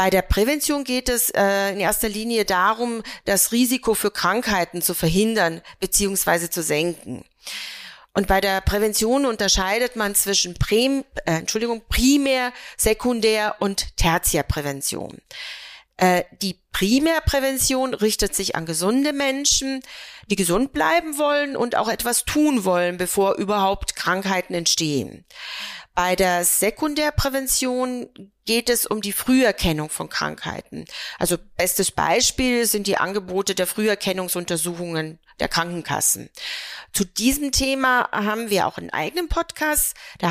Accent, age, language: German, 40-59, German